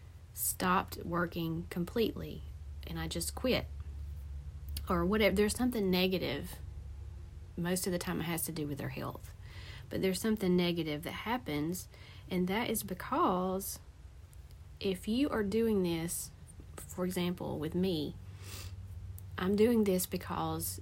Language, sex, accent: English, female, American